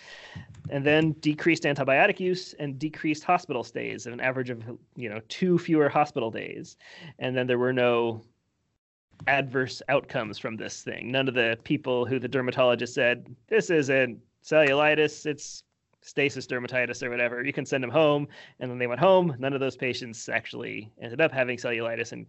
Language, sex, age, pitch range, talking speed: English, male, 30-49, 125-155 Hz, 175 wpm